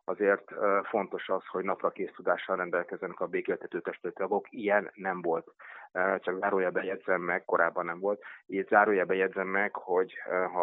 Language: Hungarian